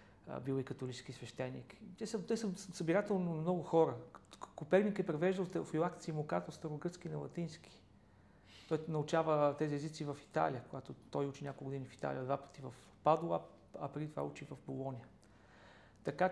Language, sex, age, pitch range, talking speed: Bulgarian, male, 40-59, 140-175 Hz, 160 wpm